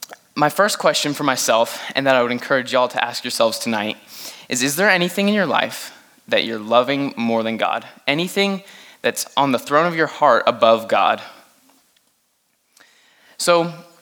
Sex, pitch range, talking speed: male, 120-165 Hz, 165 wpm